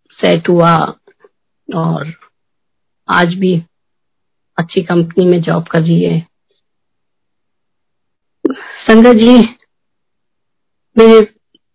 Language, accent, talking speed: Hindi, native, 65 wpm